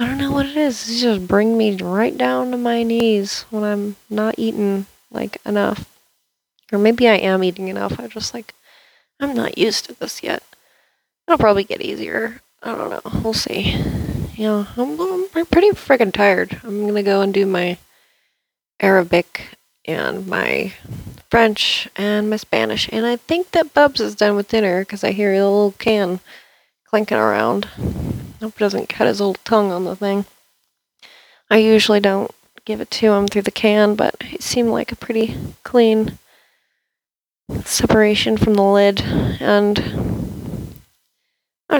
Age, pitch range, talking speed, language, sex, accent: 30-49, 200-240 Hz, 165 wpm, English, female, American